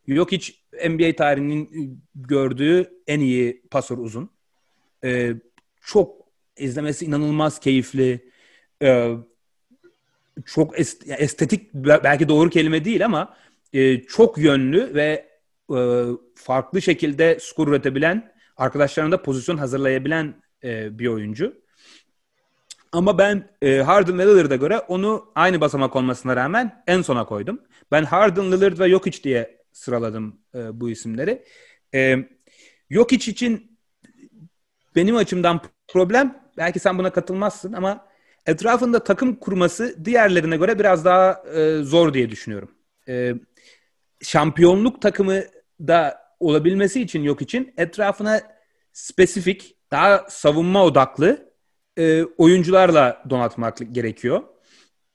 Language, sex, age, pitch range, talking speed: Turkish, male, 30-49, 135-195 Hz, 105 wpm